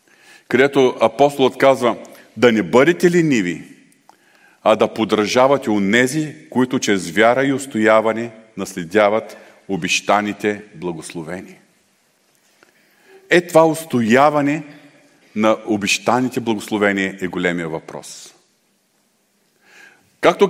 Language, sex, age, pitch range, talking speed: Bulgarian, male, 40-59, 130-185 Hz, 90 wpm